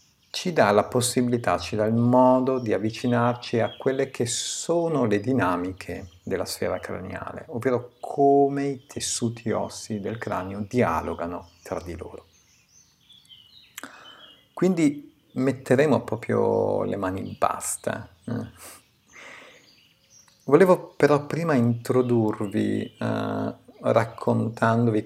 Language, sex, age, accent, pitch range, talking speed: Italian, male, 50-69, native, 105-125 Hz, 105 wpm